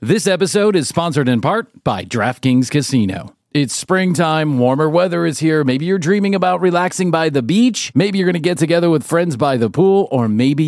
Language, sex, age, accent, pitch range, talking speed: English, male, 40-59, American, 135-175 Hz, 200 wpm